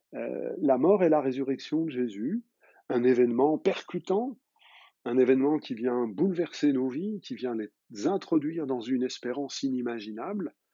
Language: French